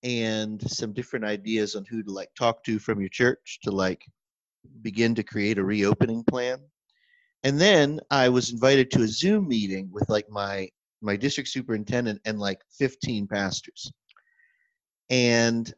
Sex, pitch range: male, 100-135 Hz